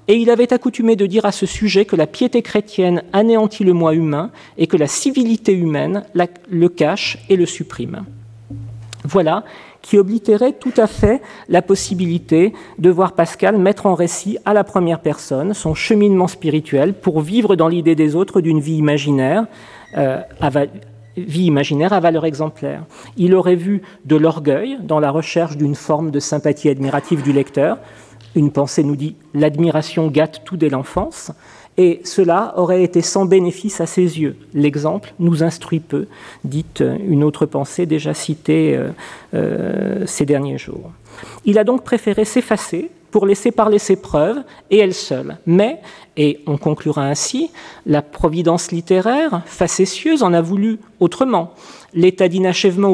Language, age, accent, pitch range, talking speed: French, 40-59, French, 155-200 Hz, 155 wpm